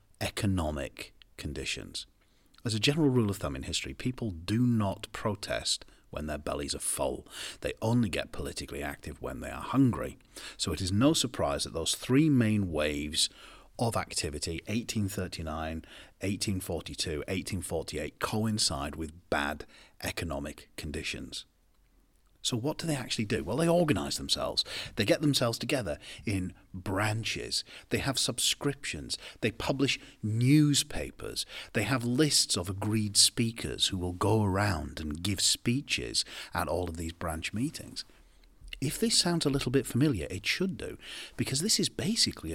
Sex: male